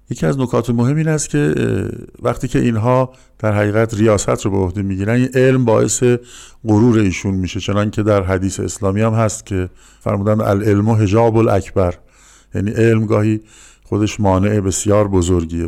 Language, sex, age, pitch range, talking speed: Persian, male, 50-69, 95-115 Hz, 155 wpm